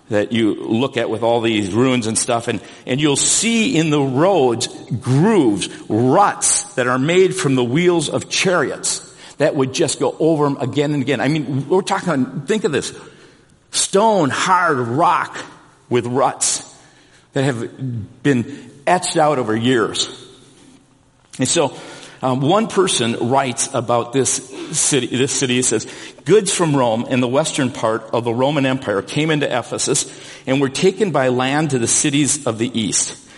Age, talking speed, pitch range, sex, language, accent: 50-69, 165 wpm, 125-155 Hz, male, English, American